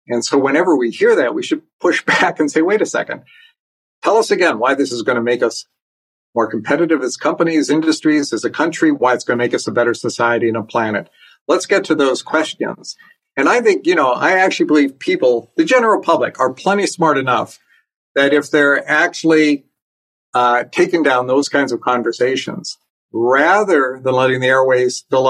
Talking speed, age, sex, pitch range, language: 195 wpm, 50-69, male, 125-155 Hz, English